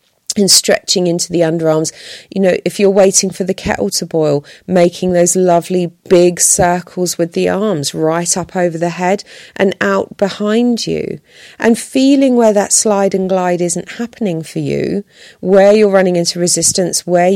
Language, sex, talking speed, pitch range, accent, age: English, female, 170 wpm, 165-195 Hz, British, 40-59